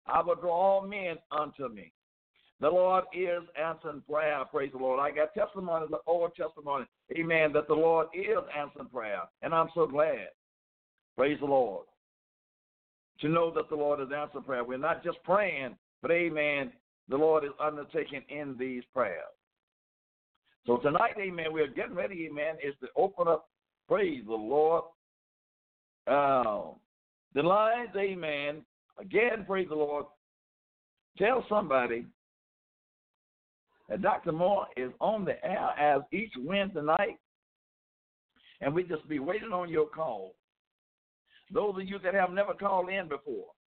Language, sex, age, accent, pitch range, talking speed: English, male, 60-79, American, 145-185 Hz, 150 wpm